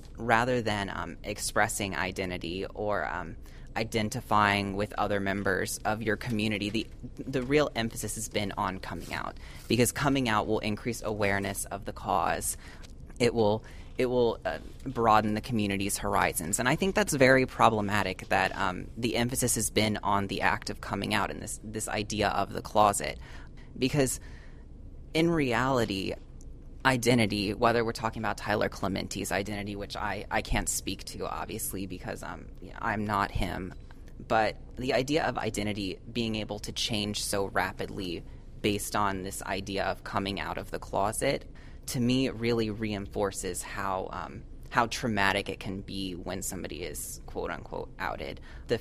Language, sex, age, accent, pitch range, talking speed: English, female, 20-39, American, 100-115 Hz, 160 wpm